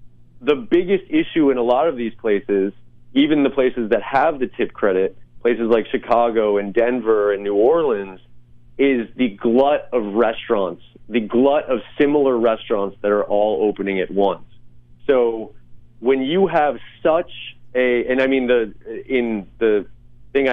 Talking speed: 160 wpm